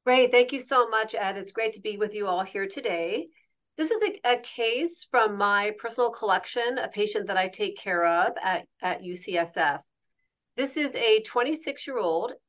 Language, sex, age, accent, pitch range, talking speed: English, female, 40-59, American, 200-280 Hz, 185 wpm